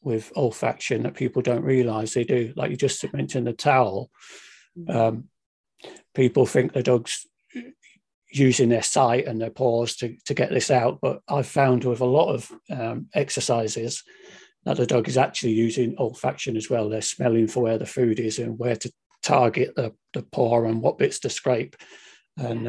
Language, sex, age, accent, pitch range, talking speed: English, male, 40-59, British, 115-140 Hz, 180 wpm